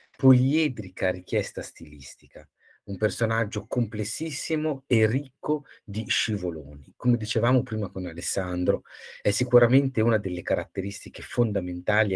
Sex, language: male, Italian